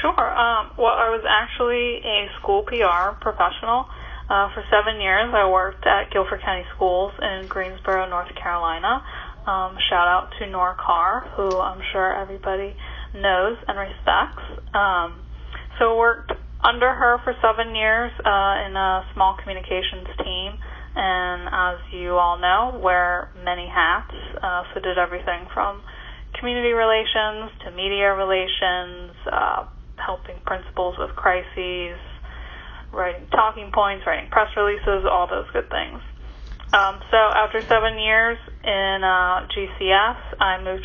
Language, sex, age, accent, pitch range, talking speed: English, female, 10-29, American, 180-215 Hz, 140 wpm